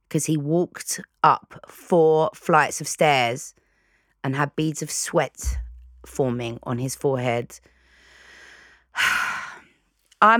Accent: British